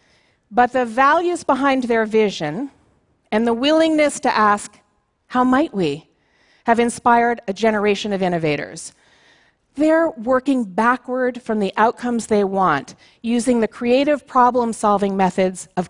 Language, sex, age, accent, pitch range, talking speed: Portuguese, female, 40-59, American, 195-255 Hz, 130 wpm